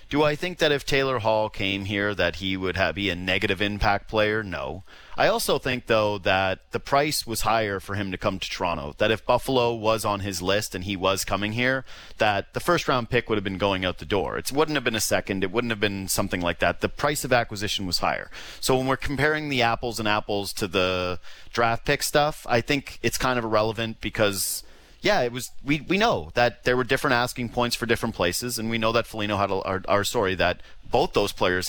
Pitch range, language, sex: 100-130 Hz, English, male